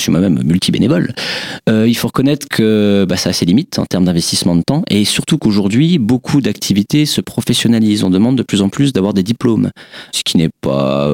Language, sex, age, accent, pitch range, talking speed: French, male, 40-59, French, 90-125 Hz, 210 wpm